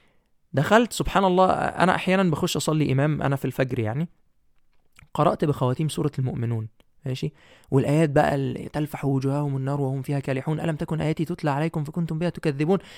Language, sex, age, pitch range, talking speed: Arabic, male, 20-39, 135-200 Hz, 155 wpm